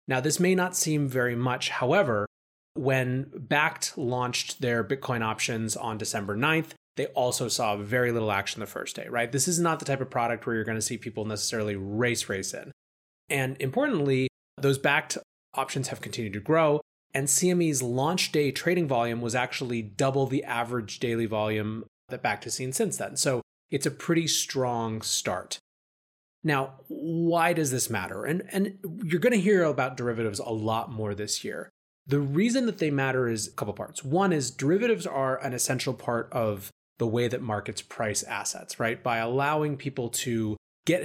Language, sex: English, male